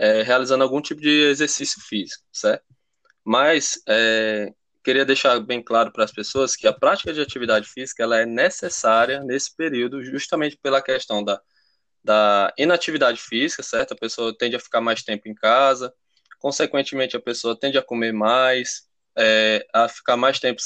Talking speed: 155 wpm